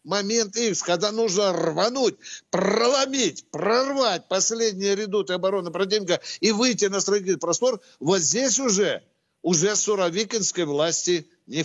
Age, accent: 60-79, native